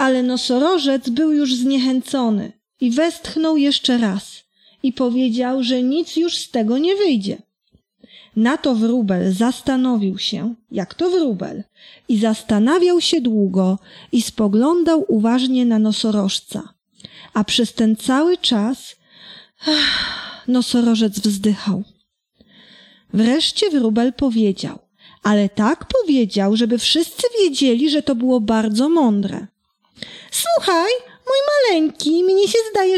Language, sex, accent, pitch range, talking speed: Polish, female, native, 215-330 Hz, 115 wpm